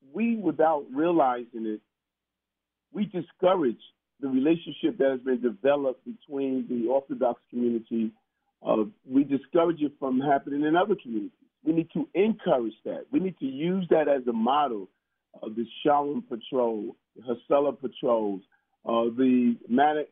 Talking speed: 145 wpm